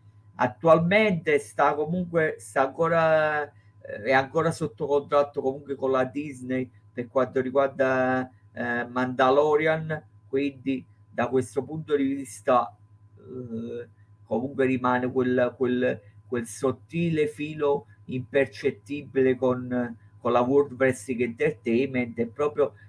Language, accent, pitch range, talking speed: Italian, native, 115-140 Hz, 110 wpm